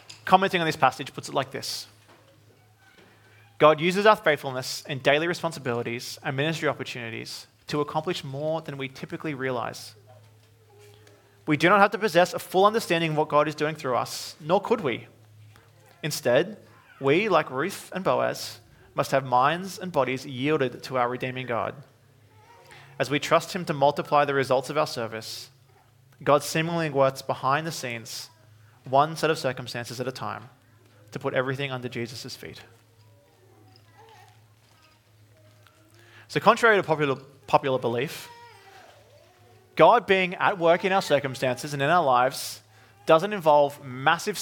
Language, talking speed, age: English, 150 wpm, 30-49